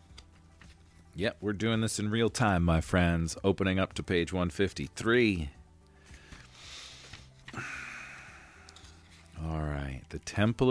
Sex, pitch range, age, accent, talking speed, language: male, 80-105 Hz, 40-59, American, 100 wpm, English